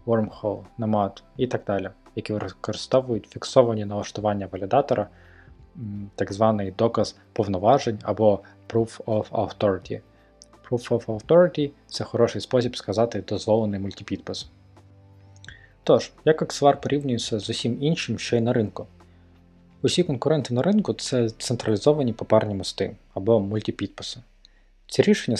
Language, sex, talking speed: Ukrainian, male, 120 wpm